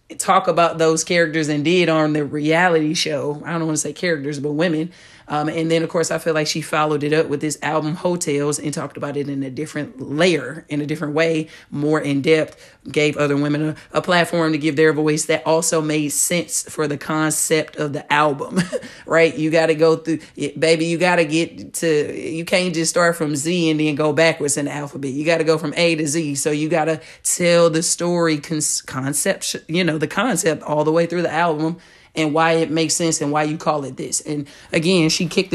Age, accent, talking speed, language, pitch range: 30-49, American, 230 wpm, English, 150-165 Hz